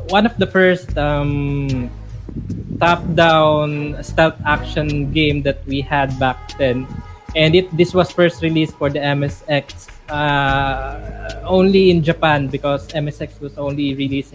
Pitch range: 130-160 Hz